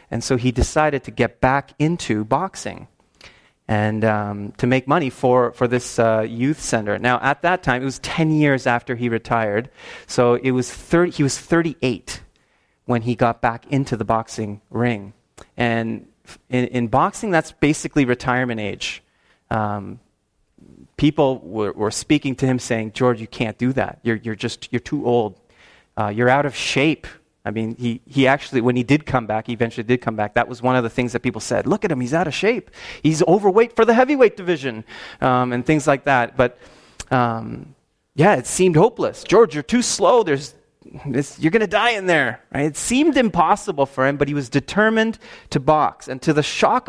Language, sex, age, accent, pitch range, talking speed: English, male, 30-49, American, 120-155 Hz, 195 wpm